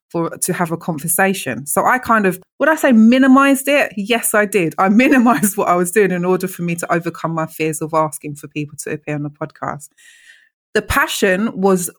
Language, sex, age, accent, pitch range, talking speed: English, female, 20-39, British, 165-215 Hz, 215 wpm